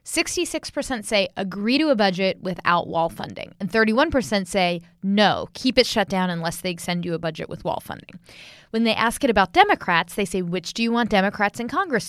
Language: English